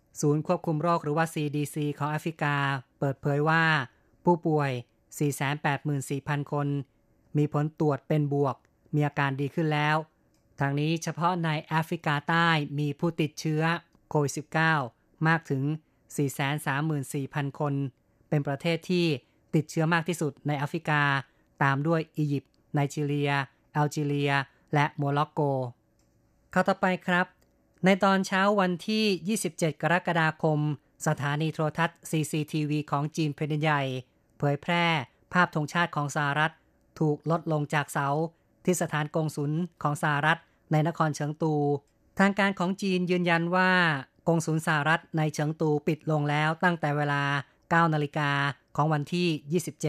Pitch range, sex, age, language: 145-165 Hz, female, 30-49, Thai